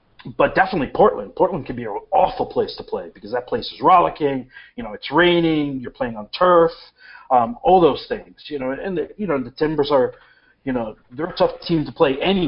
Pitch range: 135-180 Hz